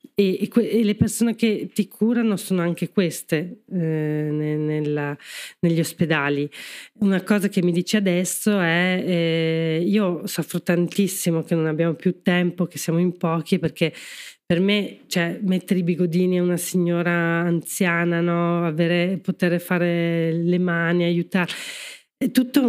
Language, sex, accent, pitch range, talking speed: Italian, female, native, 160-185 Hz, 130 wpm